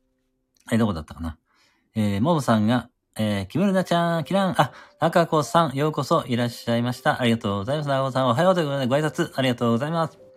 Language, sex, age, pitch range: Japanese, male, 40-59, 115-175 Hz